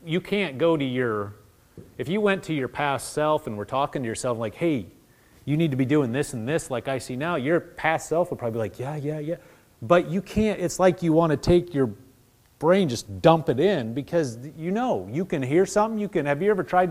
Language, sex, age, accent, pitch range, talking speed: English, male, 30-49, American, 120-165 Hz, 245 wpm